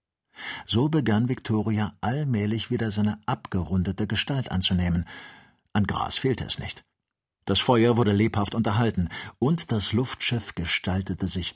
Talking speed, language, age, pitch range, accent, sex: 125 wpm, German, 50-69, 90-115 Hz, German, male